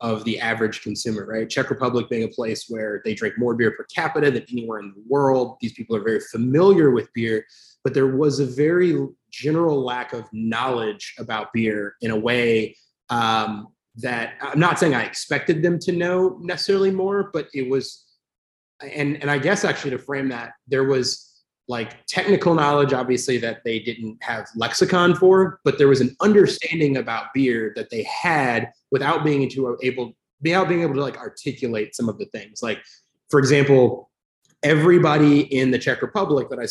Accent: American